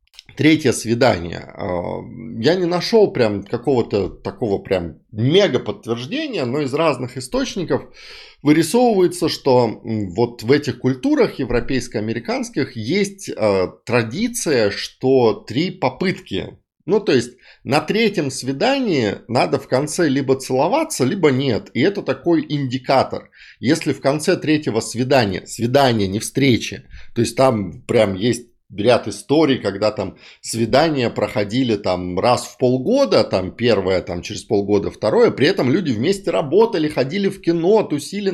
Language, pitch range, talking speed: Russian, 115-180 Hz, 130 wpm